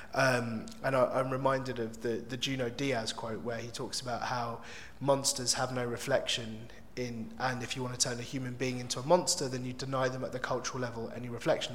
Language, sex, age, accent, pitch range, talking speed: English, male, 30-49, British, 120-140 Hz, 220 wpm